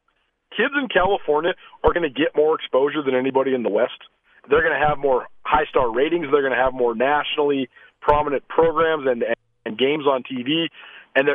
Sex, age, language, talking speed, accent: male, 40-59, English, 185 wpm, American